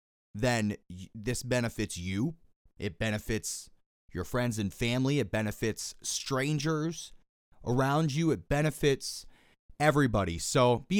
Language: English